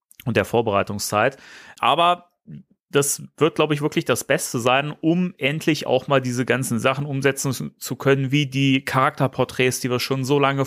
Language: German